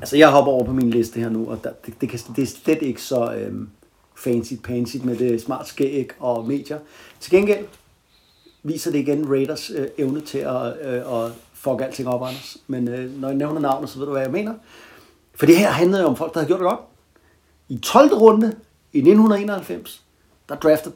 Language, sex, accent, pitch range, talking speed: Danish, male, native, 120-160 Hz, 210 wpm